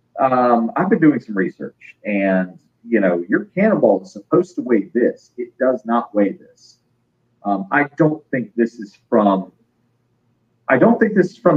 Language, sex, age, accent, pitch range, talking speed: English, male, 40-59, American, 110-130 Hz, 175 wpm